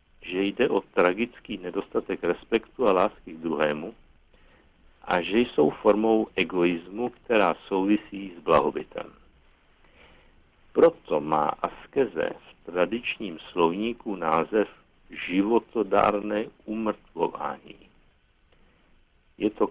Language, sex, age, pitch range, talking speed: Czech, male, 60-79, 75-110 Hz, 90 wpm